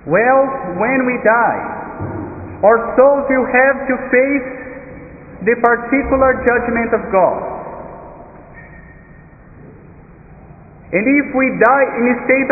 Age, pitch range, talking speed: 50-69, 225-260 Hz, 105 wpm